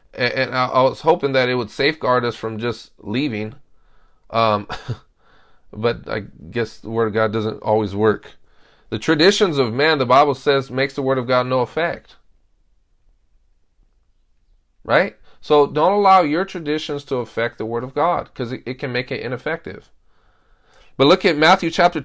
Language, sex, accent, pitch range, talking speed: English, male, American, 115-160 Hz, 165 wpm